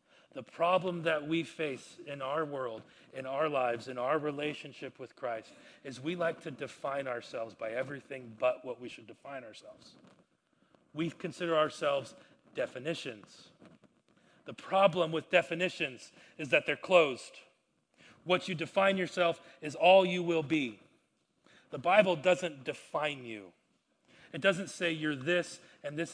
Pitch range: 135-170 Hz